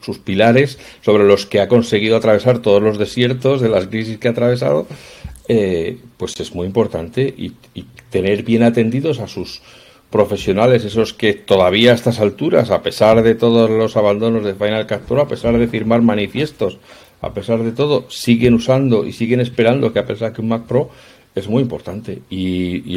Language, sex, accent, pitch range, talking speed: Spanish, male, Spanish, 100-130 Hz, 190 wpm